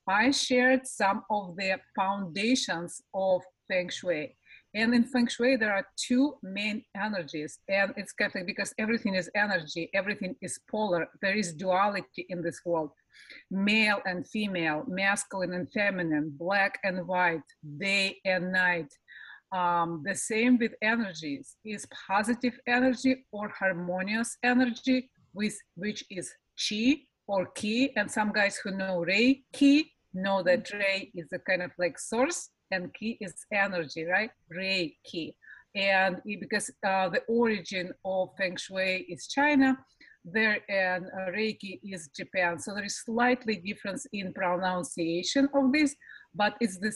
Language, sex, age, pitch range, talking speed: English, female, 40-59, 185-230 Hz, 145 wpm